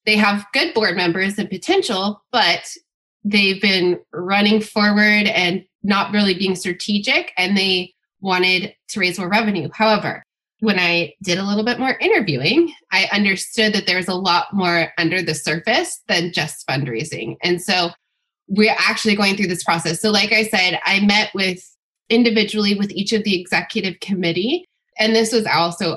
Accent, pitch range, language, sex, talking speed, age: American, 175-215 Hz, English, female, 165 wpm, 20-39